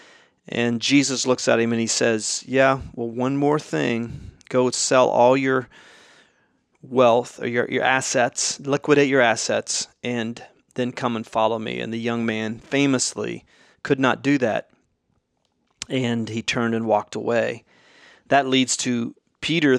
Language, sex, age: English, male, 40-59